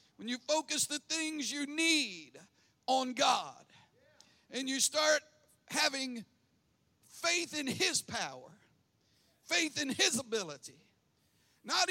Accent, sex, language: American, male, English